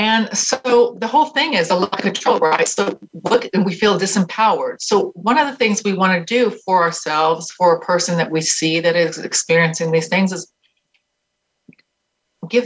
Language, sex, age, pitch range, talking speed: English, female, 40-59, 170-240 Hz, 195 wpm